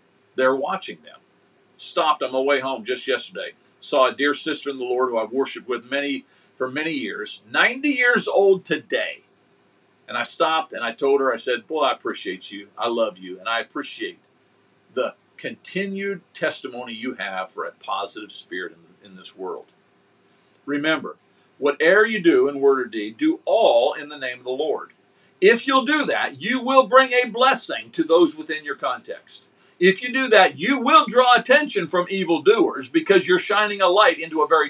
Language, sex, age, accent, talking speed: English, male, 50-69, American, 190 wpm